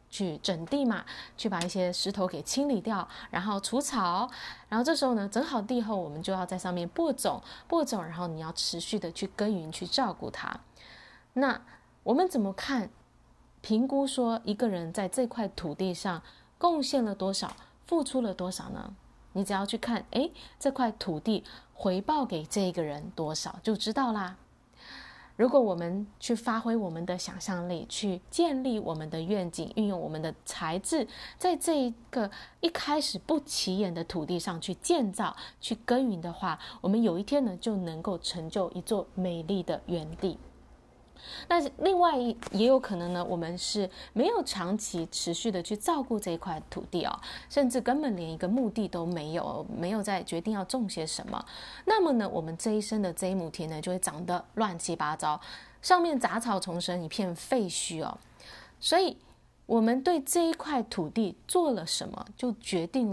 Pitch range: 180-245 Hz